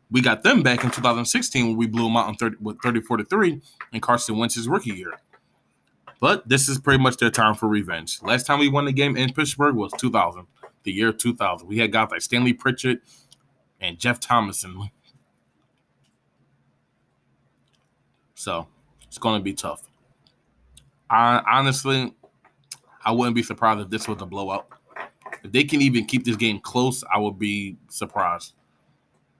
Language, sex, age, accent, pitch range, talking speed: English, male, 20-39, American, 105-135 Hz, 165 wpm